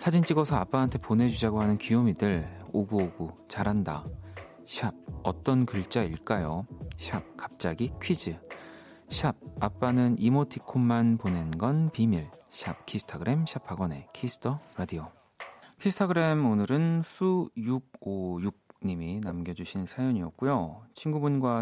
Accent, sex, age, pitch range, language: native, male, 40-59, 90-130 Hz, Korean